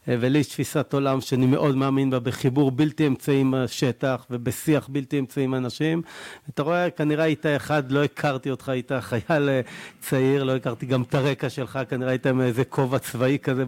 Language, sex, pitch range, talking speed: Hebrew, male, 125-150 Hz, 180 wpm